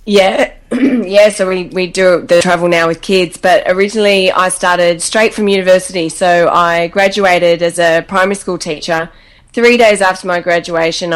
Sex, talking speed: female, 165 wpm